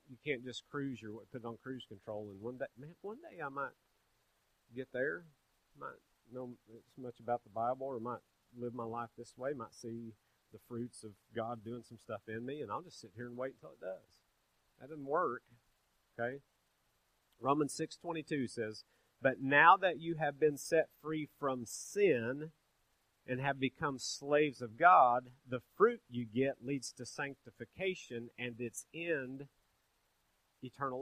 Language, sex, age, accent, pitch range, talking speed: English, male, 40-59, American, 115-145 Hz, 170 wpm